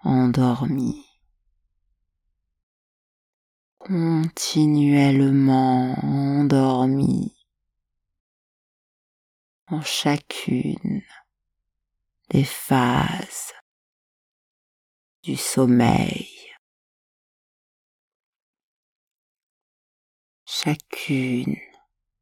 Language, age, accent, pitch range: French, 50-69, French, 85-130 Hz